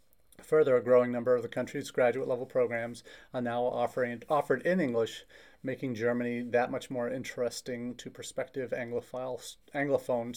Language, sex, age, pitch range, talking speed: English, male, 30-49, 120-140 Hz, 150 wpm